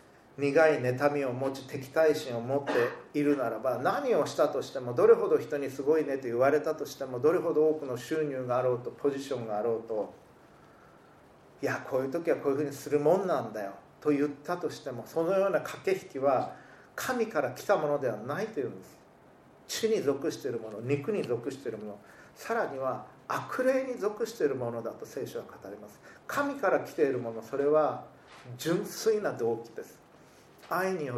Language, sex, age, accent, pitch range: Japanese, male, 40-59, native, 130-170 Hz